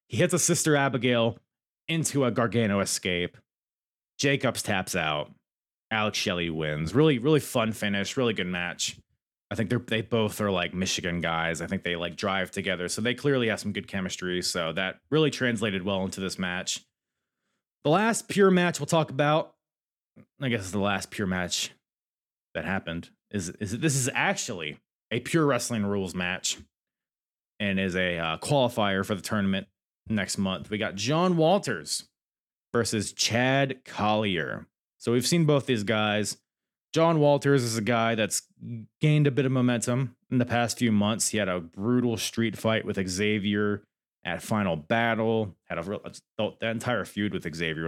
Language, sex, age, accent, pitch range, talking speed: English, male, 30-49, American, 100-130 Hz, 170 wpm